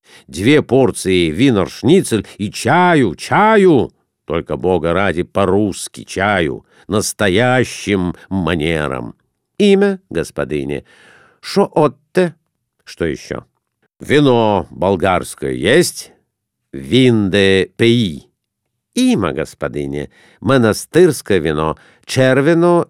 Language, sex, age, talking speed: Russian, male, 50-69, 80 wpm